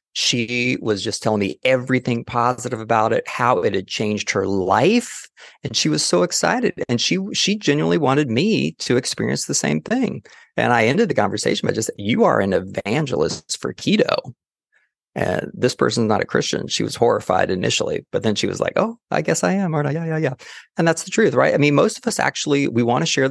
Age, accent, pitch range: 30-49, American, 115-180 Hz